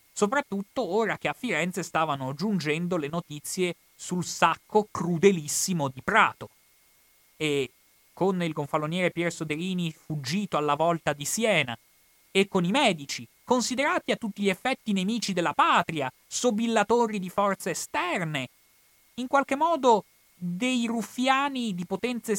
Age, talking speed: 30-49, 130 wpm